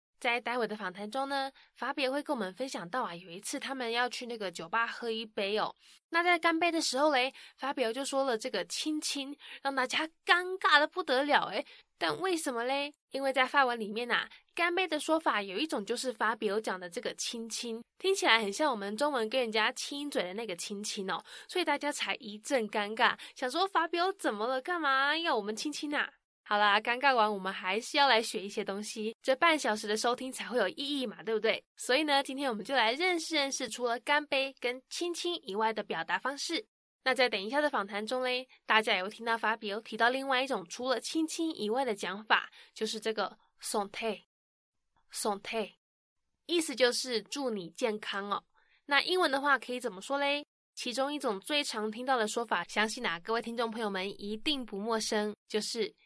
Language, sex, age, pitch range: English, female, 10-29, 220-285 Hz